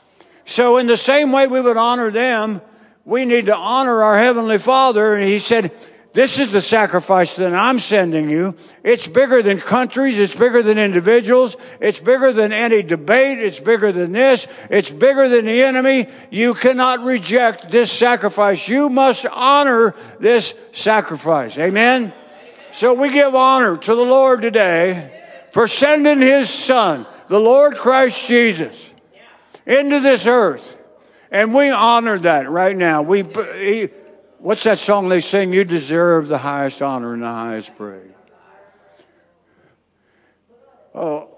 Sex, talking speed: male, 145 wpm